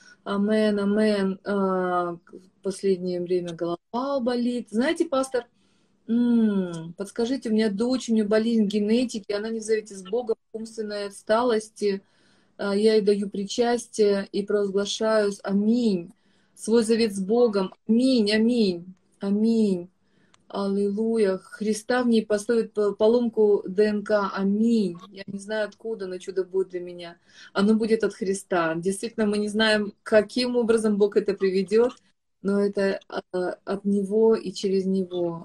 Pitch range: 195-225 Hz